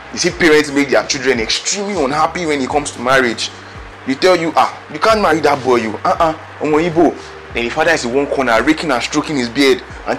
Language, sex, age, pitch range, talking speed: English, male, 30-49, 110-155 Hz, 225 wpm